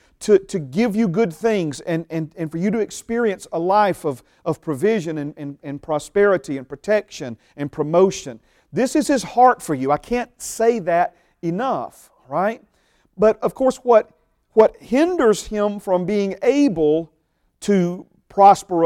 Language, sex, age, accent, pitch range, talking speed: English, male, 40-59, American, 170-245 Hz, 160 wpm